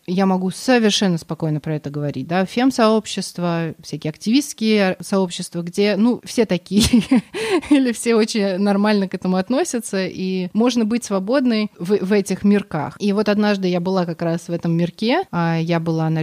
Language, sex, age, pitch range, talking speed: Russian, female, 30-49, 170-215 Hz, 160 wpm